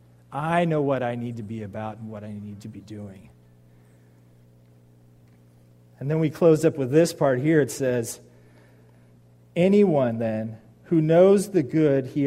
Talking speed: 160 wpm